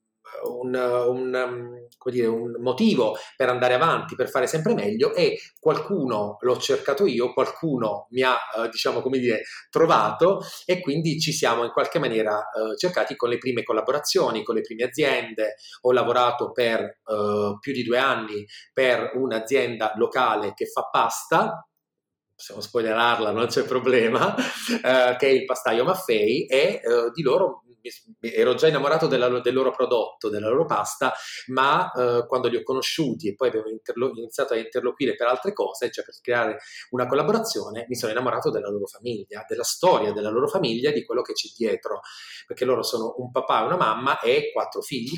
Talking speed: 165 wpm